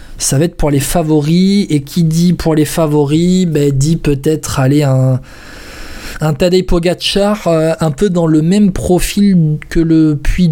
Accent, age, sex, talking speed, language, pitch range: French, 20-39, male, 165 wpm, French, 140-165 Hz